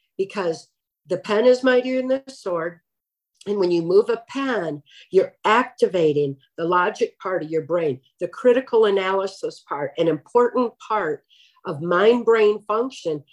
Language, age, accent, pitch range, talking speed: English, 50-69, American, 170-255 Hz, 145 wpm